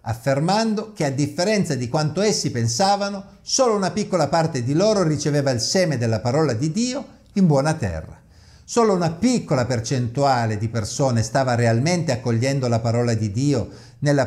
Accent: native